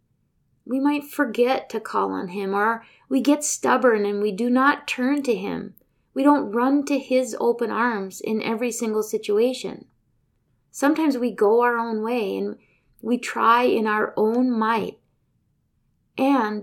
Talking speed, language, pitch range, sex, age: 155 wpm, English, 210-270 Hz, female, 30-49